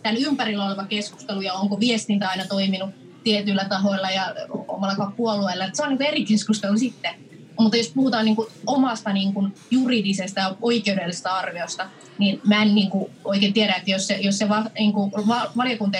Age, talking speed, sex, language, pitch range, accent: 20-39, 130 wpm, female, Finnish, 195-235 Hz, native